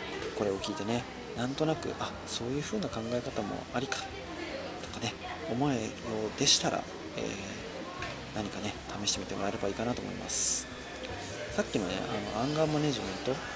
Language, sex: Japanese, male